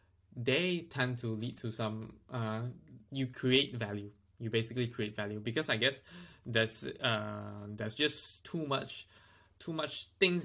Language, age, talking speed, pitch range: English, 20-39, 155 wpm, 105-130 Hz